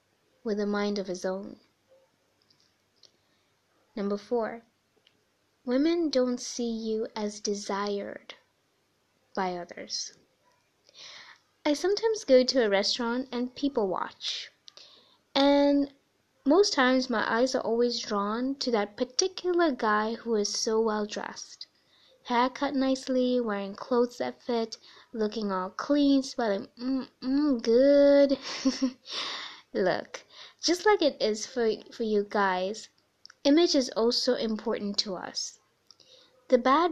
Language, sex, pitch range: English, female, 215-275 Hz